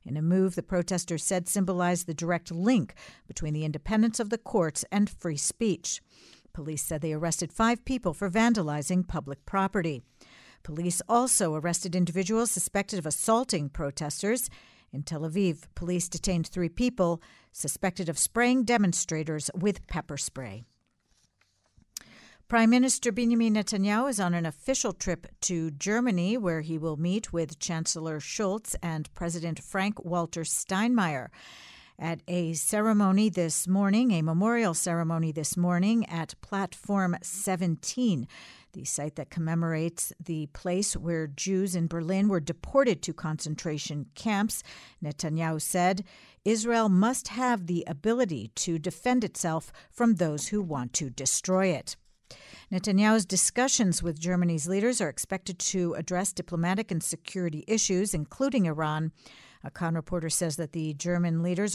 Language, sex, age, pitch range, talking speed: English, female, 50-69, 160-200 Hz, 135 wpm